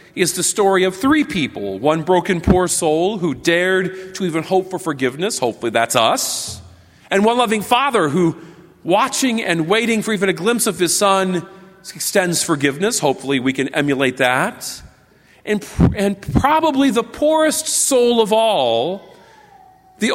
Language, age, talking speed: English, 40-59, 150 wpm